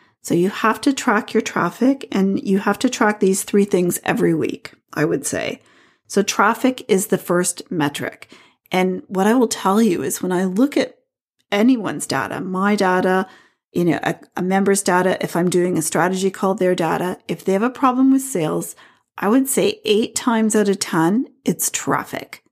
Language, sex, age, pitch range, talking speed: English, female, 40-59, 180-230 Hz, 190 wpm